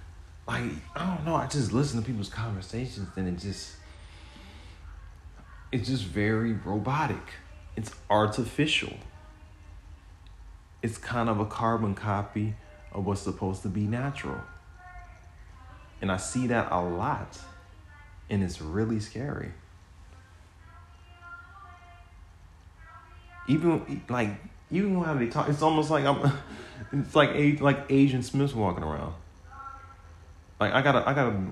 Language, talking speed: English, 120 wpm